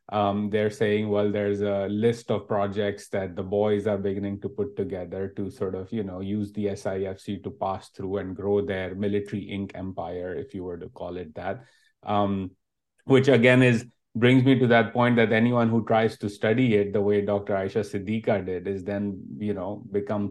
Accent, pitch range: Indian, 100-115 Hz